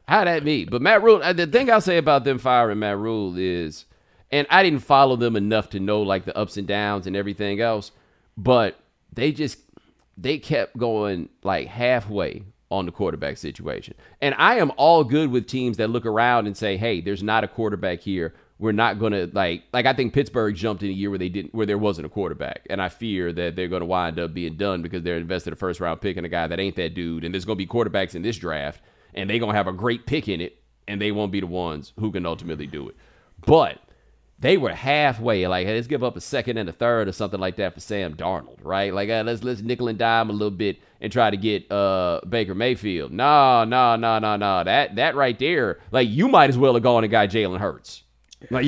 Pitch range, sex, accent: 95-125 Hz, male, American